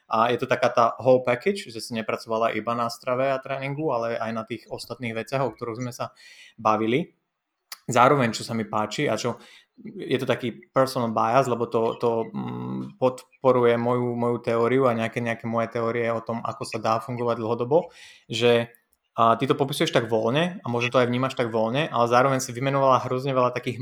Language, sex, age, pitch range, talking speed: Slovak, male, 20-39, 115-140 Hz, 195 wpm